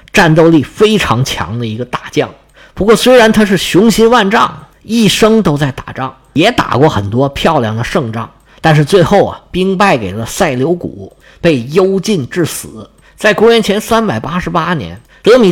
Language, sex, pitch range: Chinese, male, 125-200 Hz